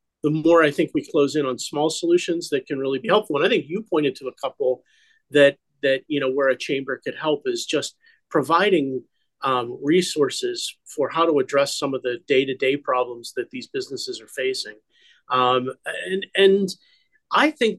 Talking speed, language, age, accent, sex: 195 wpm, English, 40-59, American, male